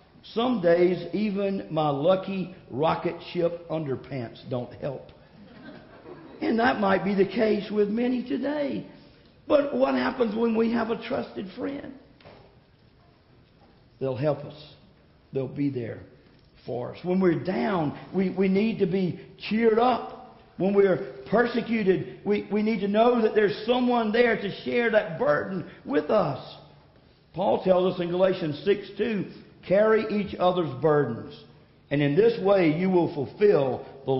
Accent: American